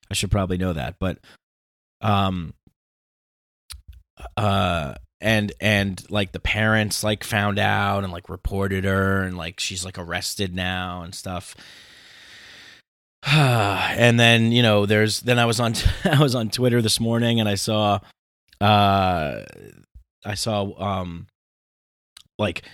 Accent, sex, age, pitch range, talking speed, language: American, male, 30-49, 95-115 Hz, 135 wpm, English